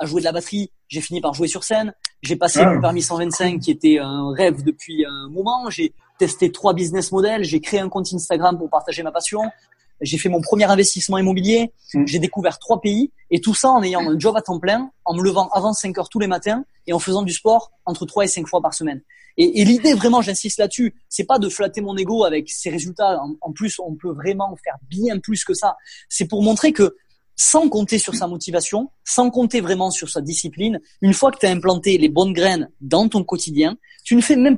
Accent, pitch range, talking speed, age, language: French, 170-220 Hz, 235 wpm, 20-39, French